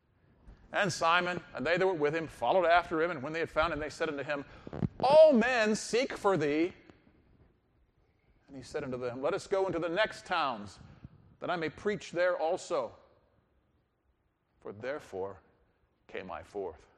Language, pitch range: English, 135-195 Hz